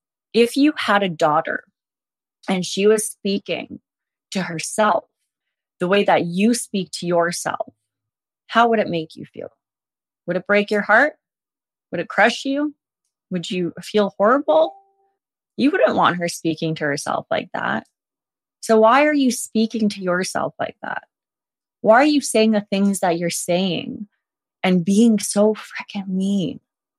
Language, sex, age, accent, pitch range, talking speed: English, female, 20-39, American, 180-240 Hz, 155 wpm